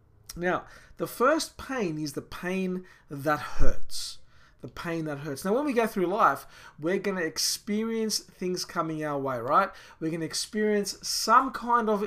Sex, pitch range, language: male, 155-205 Hz, English